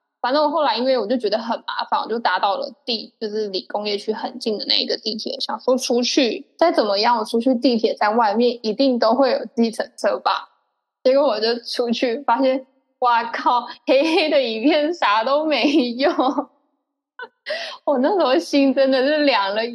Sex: female